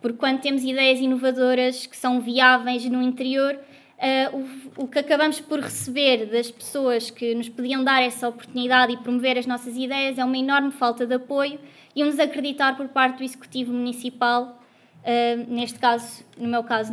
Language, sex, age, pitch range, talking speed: Portuguese, female, 20-39, 245-275 Hz, 165 wpm